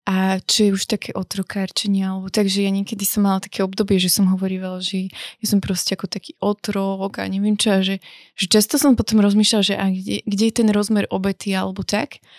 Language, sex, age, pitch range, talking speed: Slovak, female, 20-39, 190-215 Hz, 205 wpm